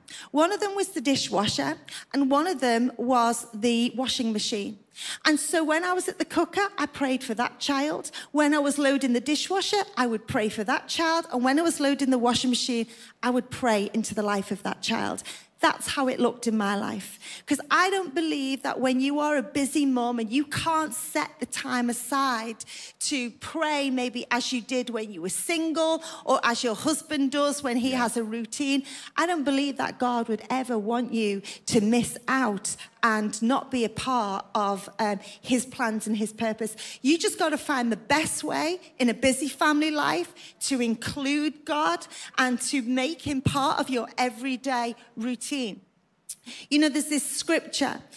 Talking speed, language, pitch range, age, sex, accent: 195 wpm, English, 230-290 Hz, 40-59, female, British